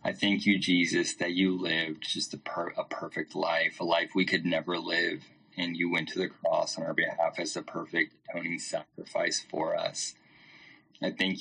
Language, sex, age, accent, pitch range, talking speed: English, male, 20-39, American, 85-95 Hz, 190 wpm